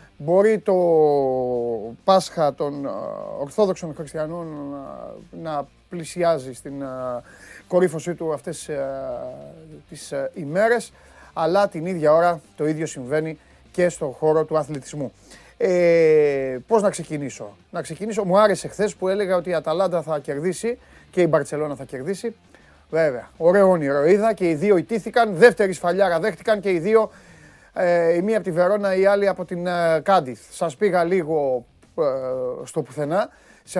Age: 30-49